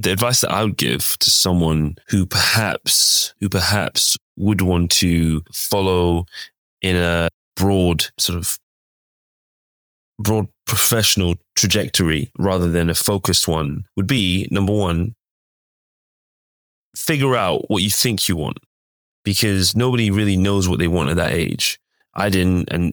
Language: English